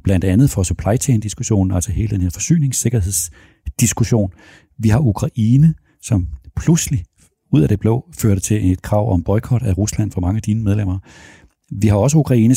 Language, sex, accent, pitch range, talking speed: Danish, male, native, 95-120 Hz, 170 wpm